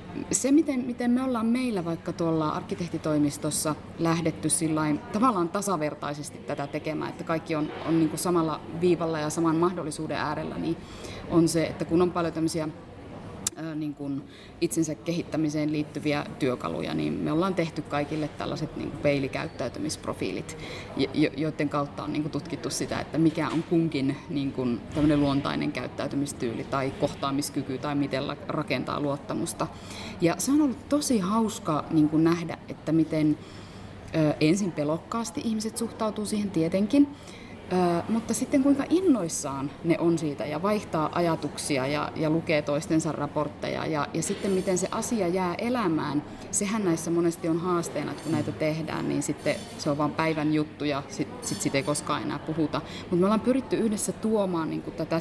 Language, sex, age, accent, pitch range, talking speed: Finnish, female, 30-49, native, 150-180 Hz, 140 wpm